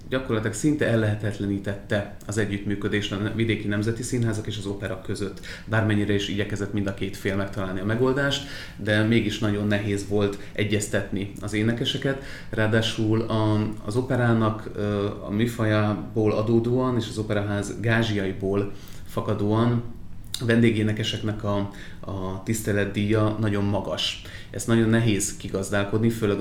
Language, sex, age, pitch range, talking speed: Hungarian, male, 30-49, 100-110 Hz, 125 wpm